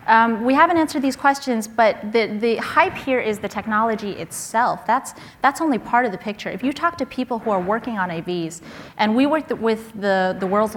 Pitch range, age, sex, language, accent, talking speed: 190-240 Hz, 30-49, female, English, American, 225 wpm